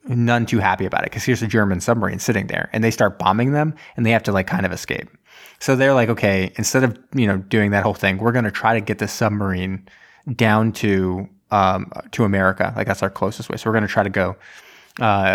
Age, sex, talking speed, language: 20-39, male, 245 wpm, English